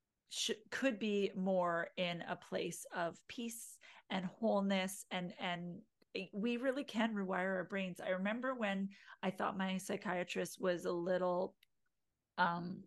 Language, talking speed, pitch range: English, 135 wpm, 190-230 Hz